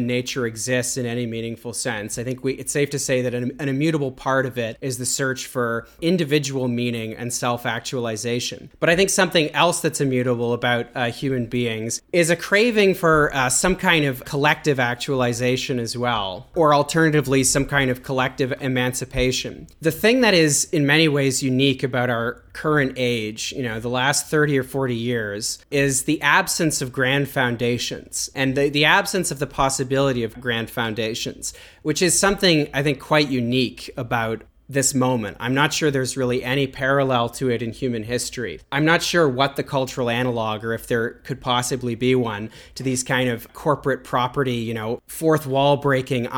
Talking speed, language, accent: 180 wpm, English, American